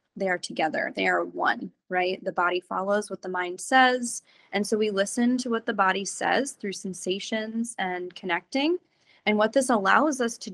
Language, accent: English, American